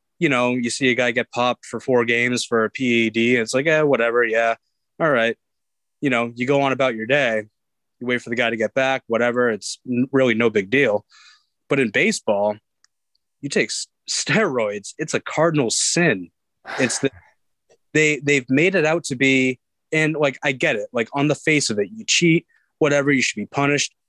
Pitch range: 115-135 Hz